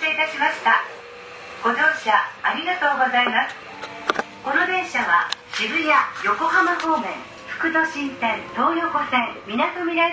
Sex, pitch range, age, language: female, 240-325 Hz, 40-59, Japanese